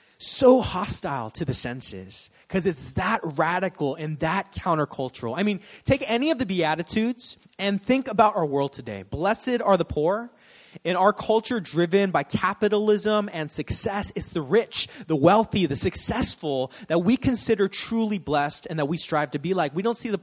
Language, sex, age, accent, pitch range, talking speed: English, male, 20-39, American, 175-230 Hz, 180 wpm